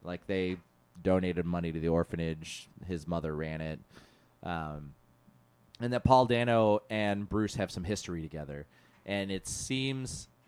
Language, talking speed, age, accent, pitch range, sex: English, 145 wpm, 30-49, American, 90-115 Hz, male